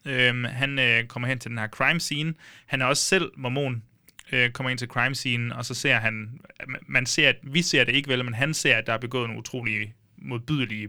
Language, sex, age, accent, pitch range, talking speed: Danish, male, 20-39, native, 115-140 Hz, 235 wpm